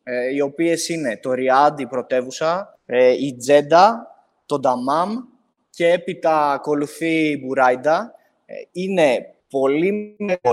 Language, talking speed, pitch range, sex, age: Greek, 125 wpm, 140-180 Hz, male, 20-39